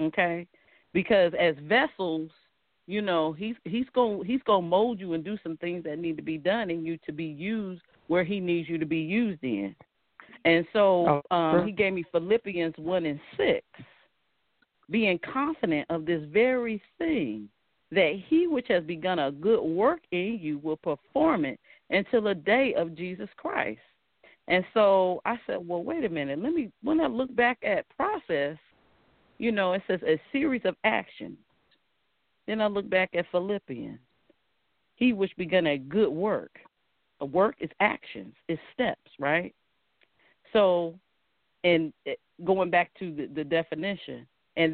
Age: 40-59